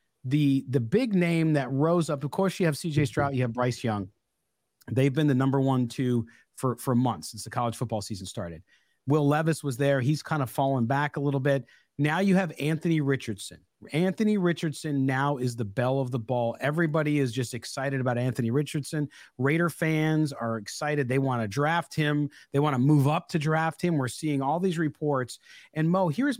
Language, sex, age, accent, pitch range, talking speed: English, male, 40-59, American, 130-175 Hz, 205 wpm